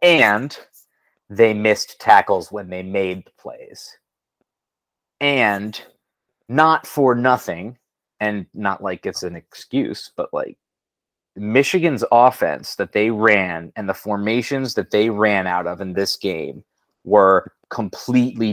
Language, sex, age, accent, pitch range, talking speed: English, male, 30-49, American, 95-115 Hz, 125 wpm